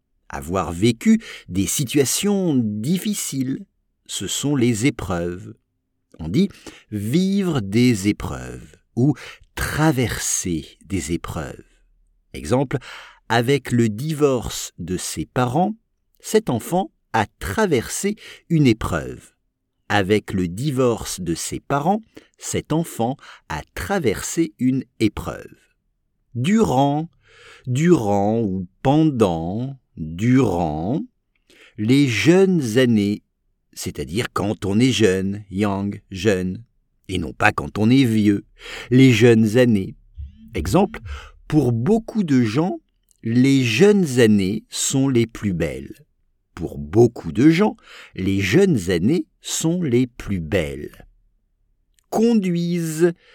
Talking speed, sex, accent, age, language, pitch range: 105 wpm, male, French, 50-69, English, 95-155 Hz